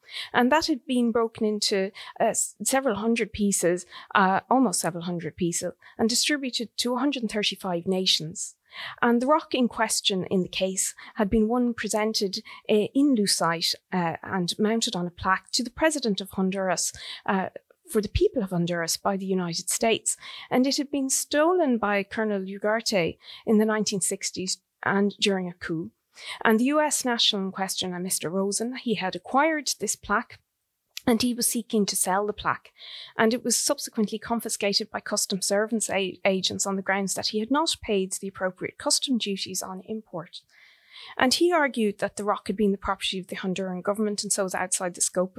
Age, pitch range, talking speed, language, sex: 30-49, 190-240 Hz, 180 wpm, English, female